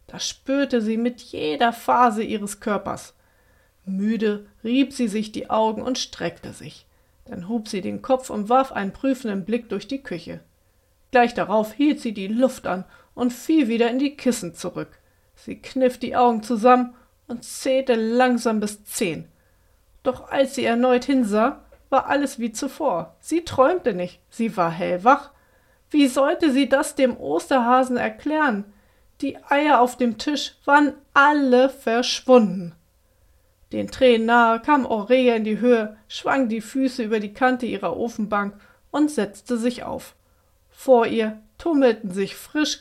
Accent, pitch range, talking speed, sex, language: German, 205-265 Hz, 155 wpm, female, German